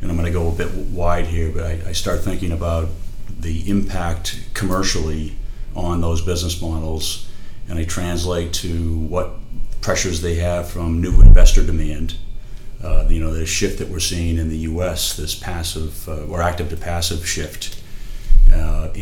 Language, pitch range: English, 85-95 Hz